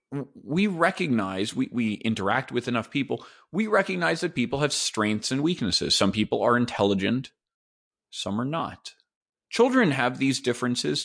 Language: English